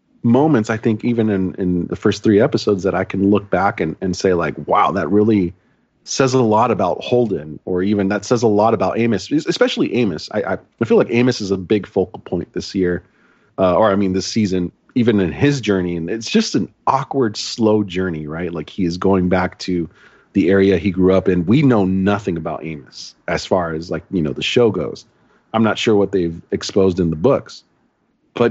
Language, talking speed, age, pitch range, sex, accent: English, 215 wpm, 30-49, 90-110 Hz, male, American